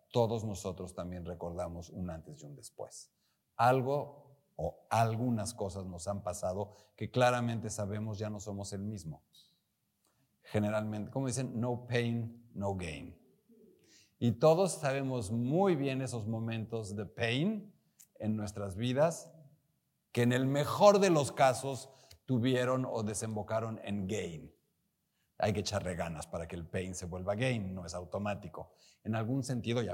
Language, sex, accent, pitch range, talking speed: Spanish, male, Mexican, 100-130 Hz, 145 wpm